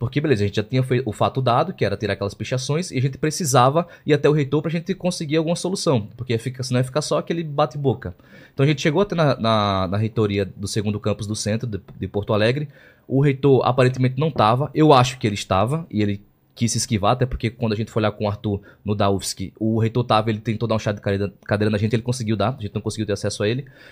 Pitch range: 105-140 Hz